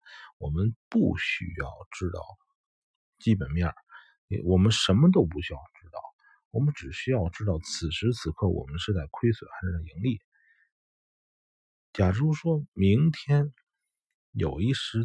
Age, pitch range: 50-69, 95-135 Hz